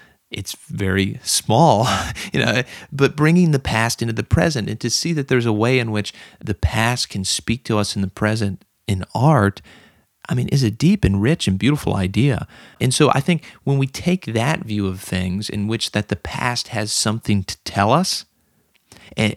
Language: English